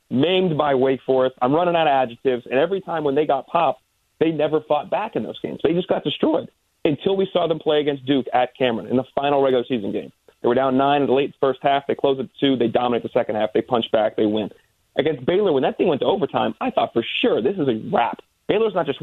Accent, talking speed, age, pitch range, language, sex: American, 265 wpm, 40-59, 125-145 Hz, English, male